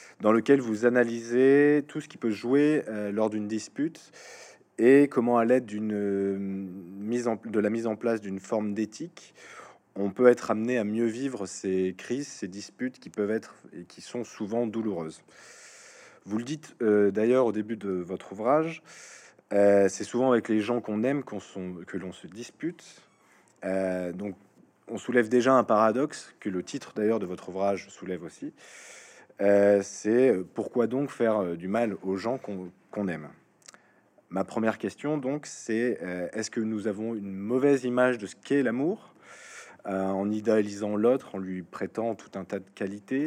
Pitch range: 95-120 Hz